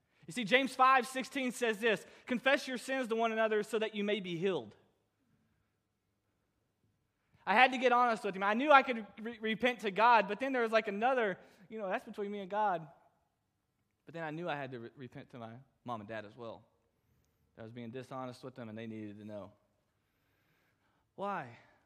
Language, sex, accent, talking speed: English, male, American, 200 wpm